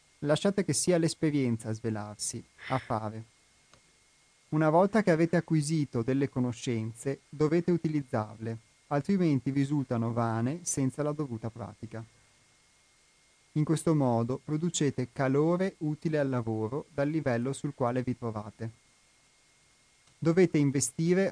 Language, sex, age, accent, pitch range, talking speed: Italian, male, 30-49, native, 115-155 Hz, 115 wpm